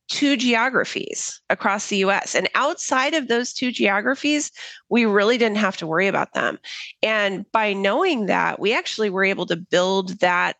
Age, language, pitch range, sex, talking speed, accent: 30-49, English, 180-230 Hz, female, 170 wpm, American